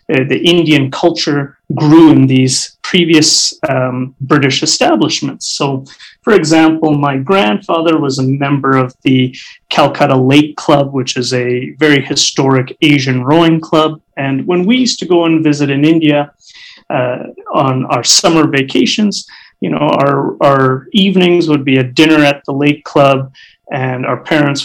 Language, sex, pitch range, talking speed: English, male, 135-160 Hz, 155 wpm